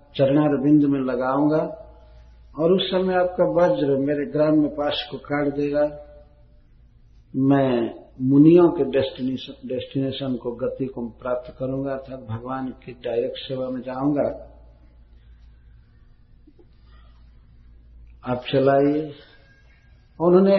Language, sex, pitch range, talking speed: Hindi, male, 110-150 Hz, 100 wpm